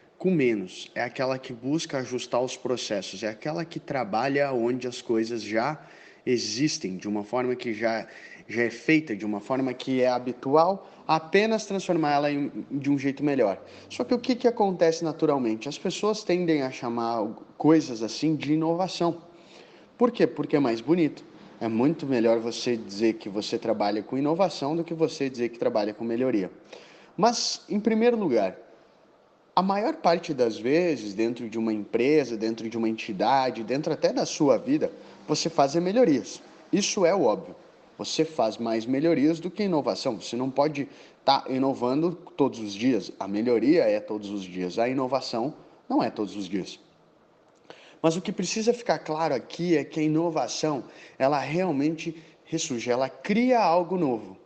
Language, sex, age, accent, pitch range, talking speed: Portuguese, male, 20-39, Brazilian, 115-170 Hz, 170 wpm